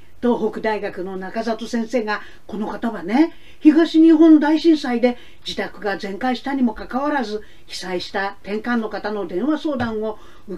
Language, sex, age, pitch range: Japanese, female, 50-69, 210-290 Hz